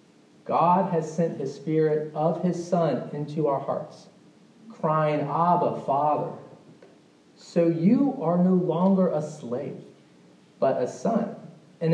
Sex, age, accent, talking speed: male, 30-49, American, 125 wpm